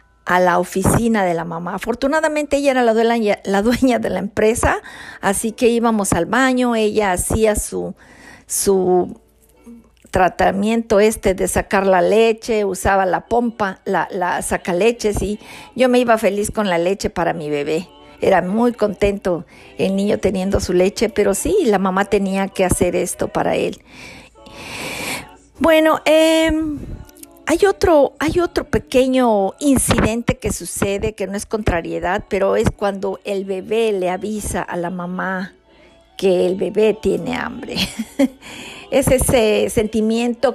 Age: 50-69